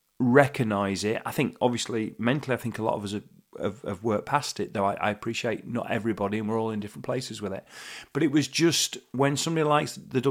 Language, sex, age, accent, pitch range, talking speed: English, male, 40-59, British, 105-125 Hz, 235 wpm